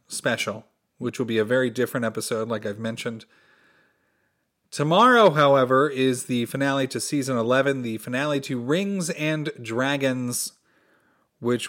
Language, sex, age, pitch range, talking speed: English, male, 30-49, 115-155 Hz, 135 wpm